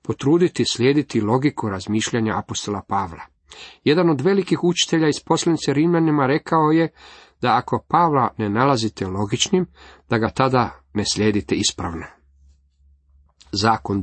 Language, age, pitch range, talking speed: Croatian, 40-59, 105-140 Hz, 120 wpm